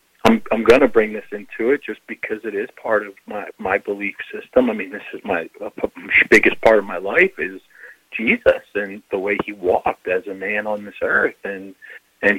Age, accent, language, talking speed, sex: 40-59, American, English, 215 wpm, male